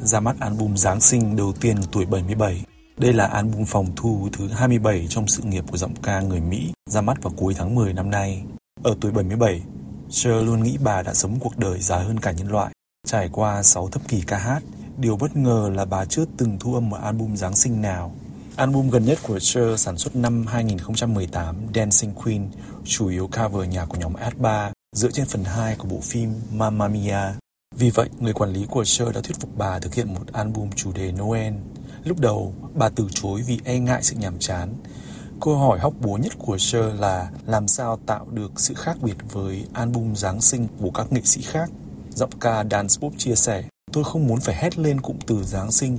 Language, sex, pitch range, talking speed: Vietnamese, male, 100-120 Hz, 215 wpm